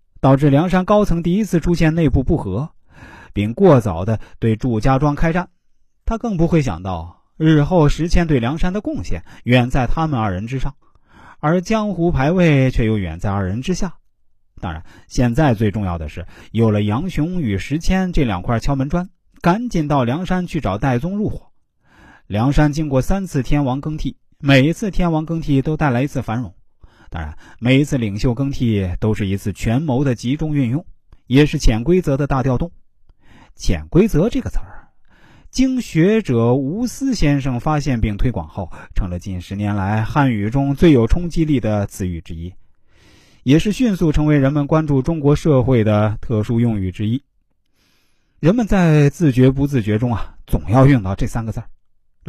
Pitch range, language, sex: 110-160 Hz, Chinese, male